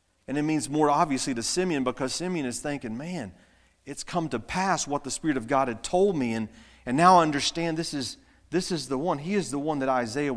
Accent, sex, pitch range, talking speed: American, male, 115-160 Hz, 235 wpm